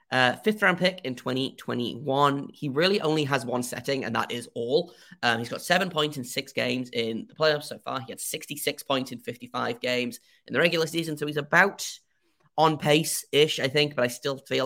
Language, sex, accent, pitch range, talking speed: English, male, British, 120-150 Hz, 210 wpm